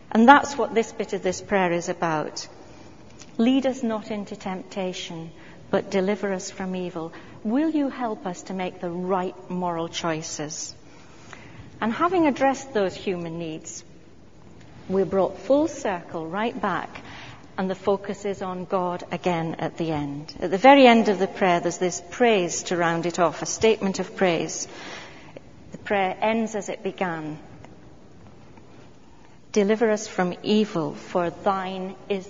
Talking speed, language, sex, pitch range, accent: 155 wpm, English, female, 170-215 Hz, British